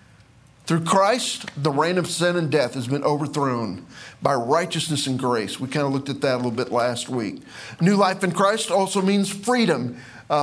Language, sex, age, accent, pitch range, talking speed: English, male, 50-69, American, 145-195 Hz, 195 wpm